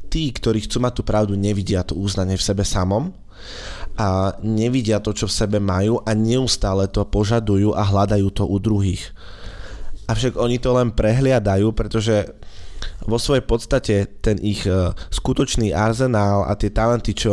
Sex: male